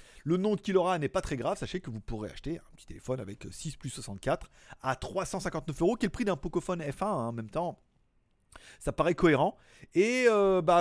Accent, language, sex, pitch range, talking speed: French, French, male, 130-200 Hz, 220 wpm